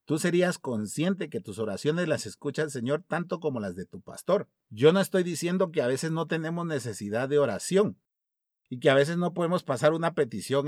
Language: Spanish